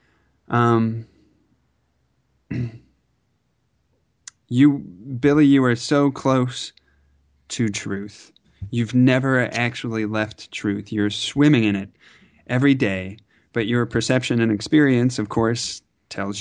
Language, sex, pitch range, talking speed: English, male, 105-135 Hz, 100 wpm